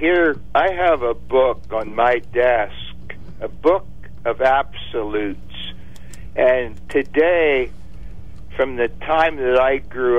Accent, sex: American, male